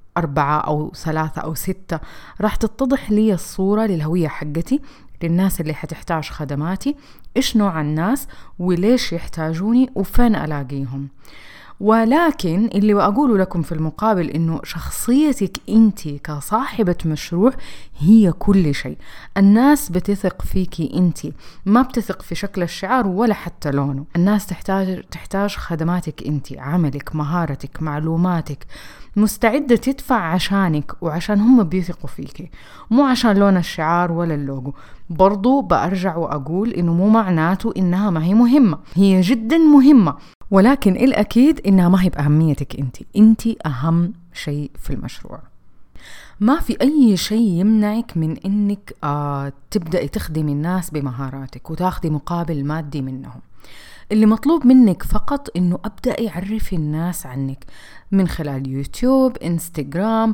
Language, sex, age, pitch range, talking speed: Arabic, female, 30-49, 160-215 Hz, 120 wpm